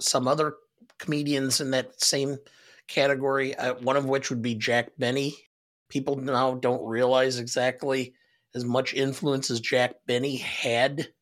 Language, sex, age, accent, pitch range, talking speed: English, male, 50-69, American, 125-145 Hz, 140 wpm